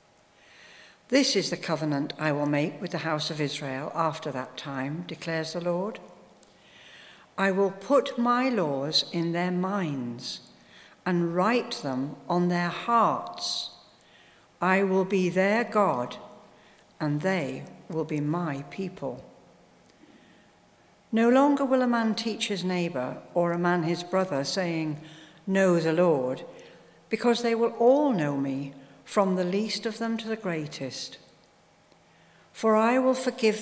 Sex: female